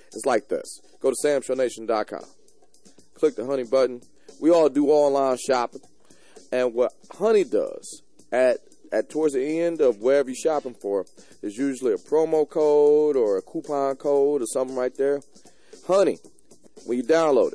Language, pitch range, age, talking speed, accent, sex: English, 130-165 Hz, 30-49, 155 wpm, American, male